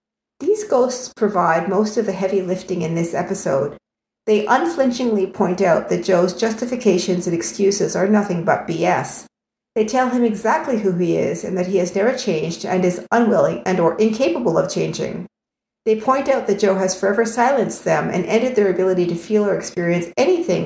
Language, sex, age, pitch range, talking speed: English, female, 50-69, 185-250 Hz, 185 wpm